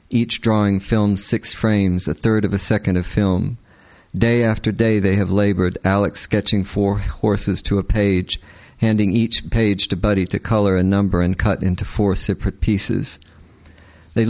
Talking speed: 170 wpm